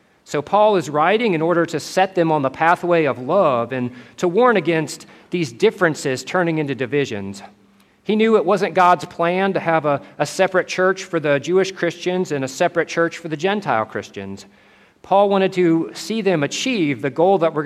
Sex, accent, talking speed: male, American, 195 wpm